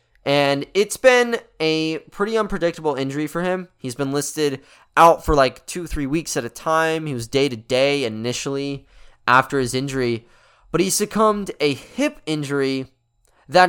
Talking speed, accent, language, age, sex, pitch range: 155 wpm, American, English, 20-39, male, 135-175 Hz